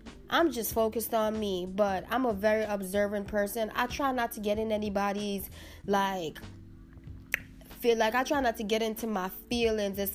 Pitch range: 205-240 Hz